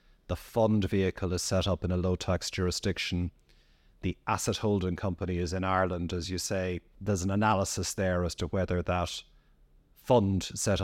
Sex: male